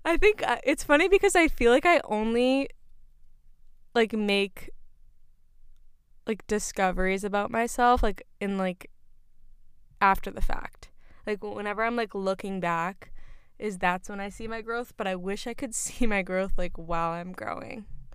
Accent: American